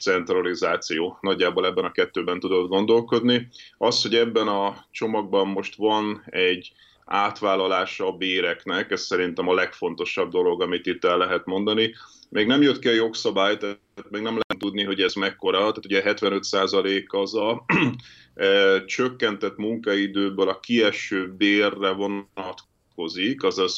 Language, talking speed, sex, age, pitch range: Hungarian, 135 wpm, male, 30-49, 95-120 Hz